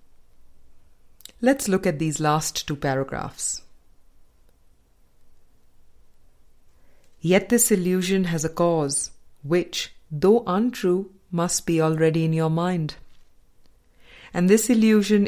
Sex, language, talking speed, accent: female, English, 100 wpm, Indian